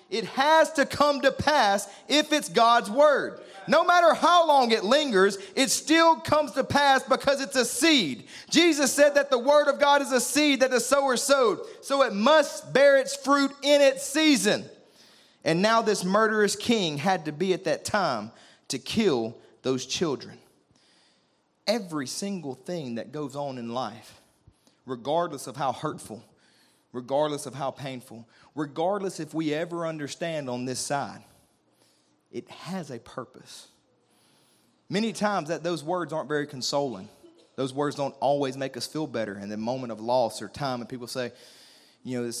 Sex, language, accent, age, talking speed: male, English, American, 30-49, 170 wpm